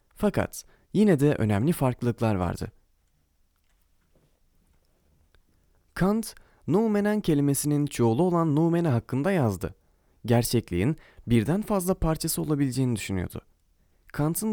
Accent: native